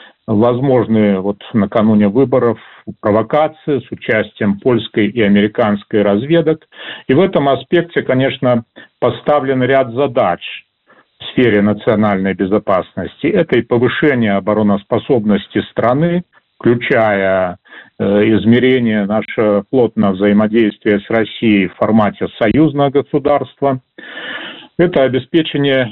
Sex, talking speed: male, 95 wpm